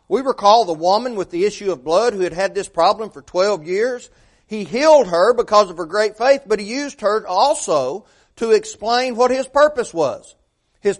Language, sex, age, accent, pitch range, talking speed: English, male, 40-59, American, 170-230 Hz, 200 wpm